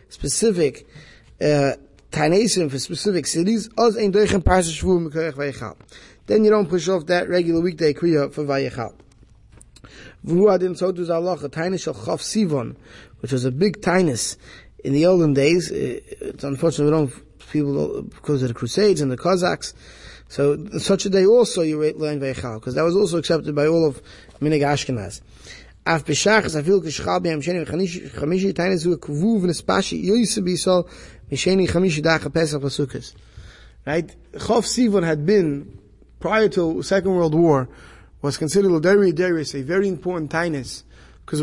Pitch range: 145-185 Hz